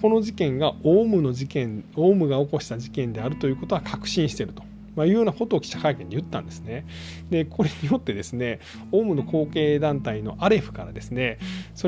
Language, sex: Japanese, male